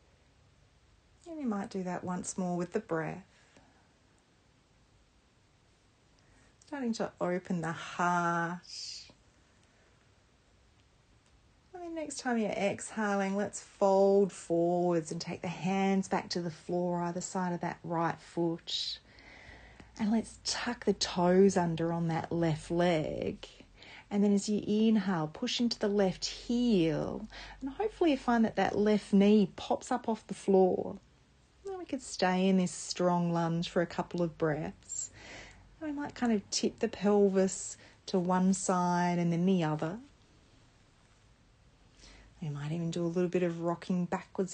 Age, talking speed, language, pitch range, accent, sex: 30-49, 145 wpm, English, 165-205 Hz, Australian, female